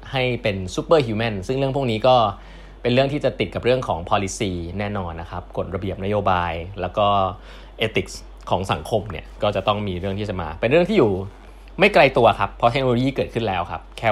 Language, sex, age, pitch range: Thai, male, 20-39, 95-115 Hz